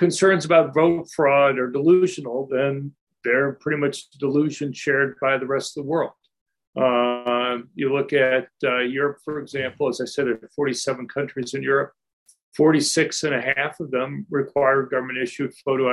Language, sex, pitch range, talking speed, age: English, male, 125-145 Hz, 165 wpm, 50-69